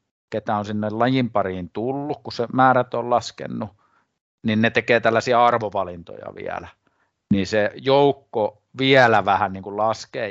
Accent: native